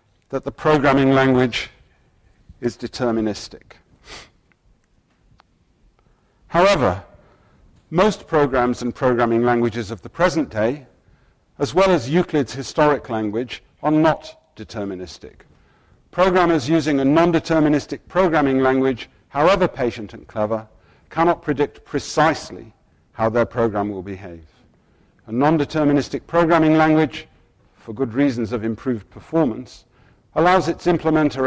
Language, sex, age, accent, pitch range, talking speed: English, male, 50-69, British, 115-155 Hz, 105 wpm